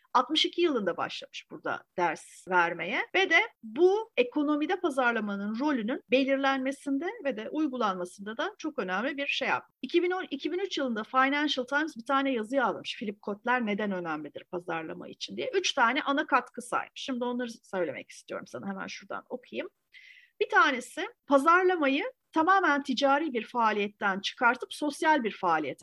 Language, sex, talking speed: Turkish, female, 145 wpm